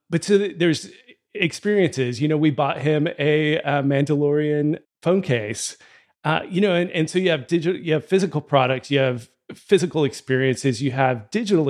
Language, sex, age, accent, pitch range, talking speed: English, male, 30-49, American, 130-155 Hz, 175 wpm